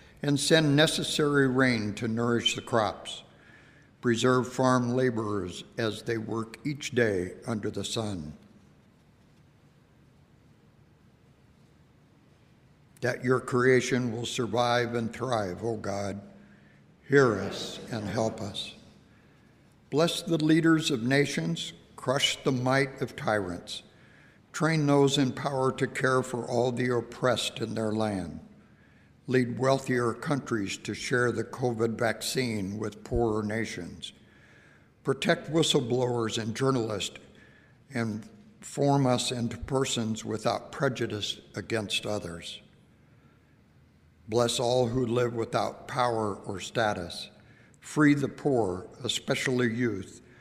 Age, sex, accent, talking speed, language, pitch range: 60-79, male, American, 110 wpm, English, 110-130 Hz